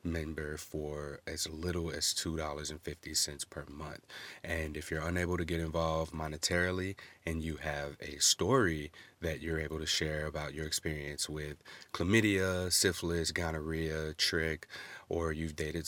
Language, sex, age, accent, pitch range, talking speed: English, male, 30-49, American, 80-85 Hz, 140 wpm